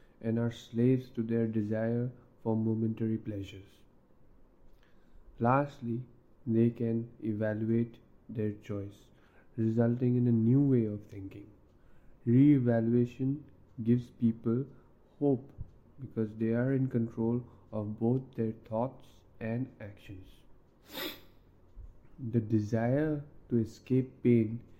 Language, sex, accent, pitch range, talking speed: English, male, Indian, 105-125 Hz, 100 wpm